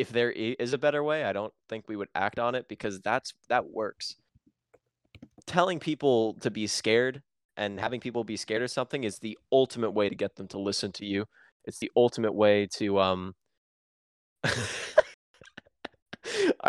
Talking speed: 175 wpm